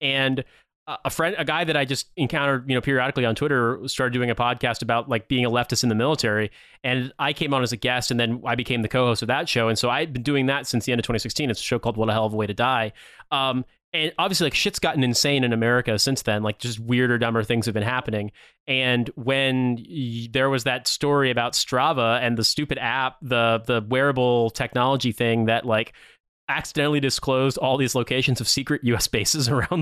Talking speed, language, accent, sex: 225 wpm, English, American, male